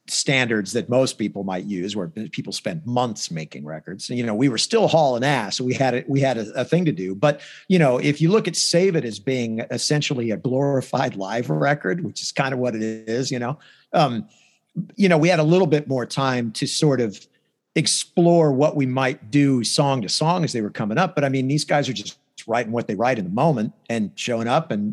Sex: male